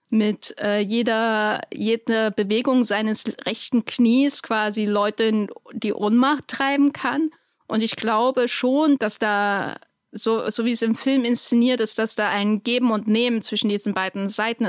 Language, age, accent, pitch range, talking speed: German, 10-29, German, 205-240 Hz, 160 wpm